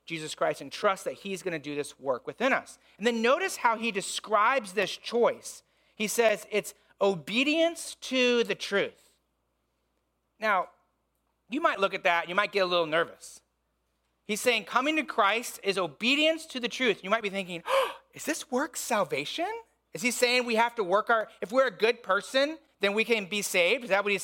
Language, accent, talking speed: English, American, 200 wpm